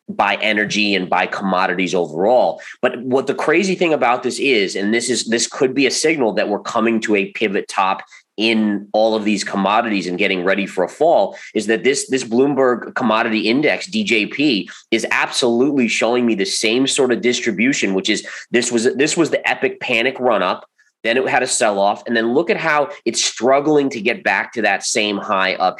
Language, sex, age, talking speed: English, male, 20-39, 205 wpm